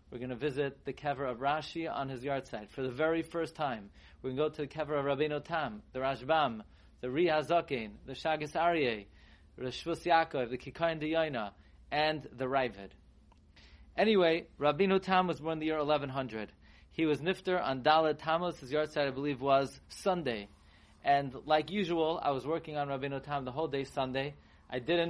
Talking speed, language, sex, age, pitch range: 190 wpm, English, male, 30-49, 125-165 Hz